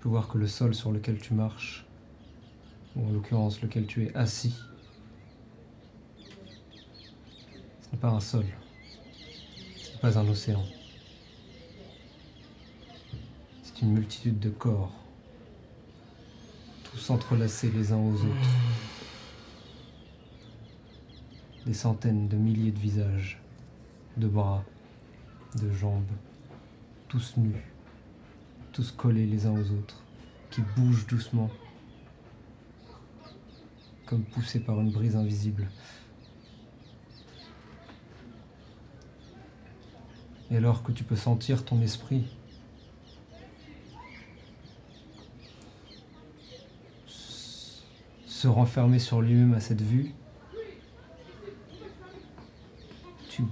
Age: 40-59